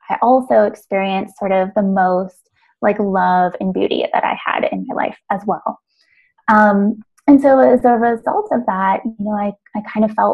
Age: 20-39